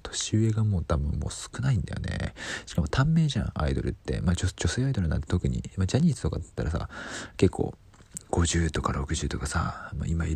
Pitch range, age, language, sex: 80-110 Hz, 40-59, Japanese, male